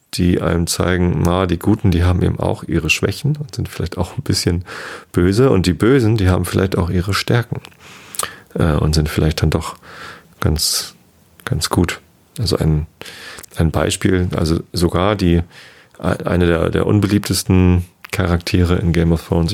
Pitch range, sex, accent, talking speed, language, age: 80-100 Hz, male, German, 160 wpm, German, 30-49